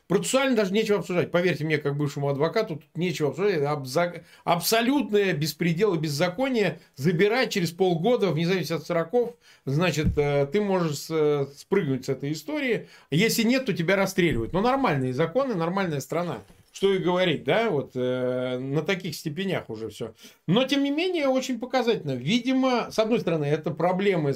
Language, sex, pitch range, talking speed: Russian, male, 150-200 Hz, 155 wpm